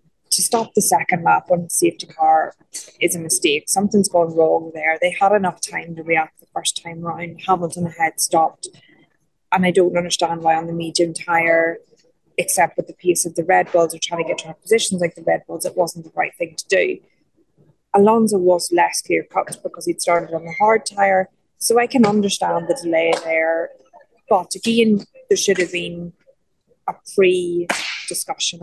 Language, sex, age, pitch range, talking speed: English, female, 20-39, 170-205 Hz, 190 wpm